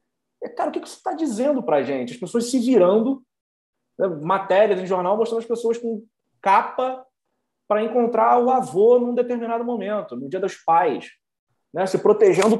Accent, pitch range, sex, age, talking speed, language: Brazilian, 140-235 Hz, male, 20-39, 180 wpm, Portuguese